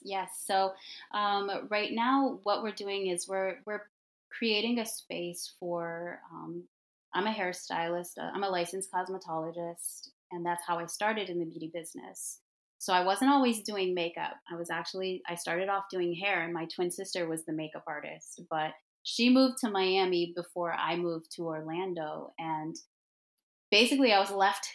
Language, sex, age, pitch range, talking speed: English, female, 20-39, 175-210 Hz, 170 wpm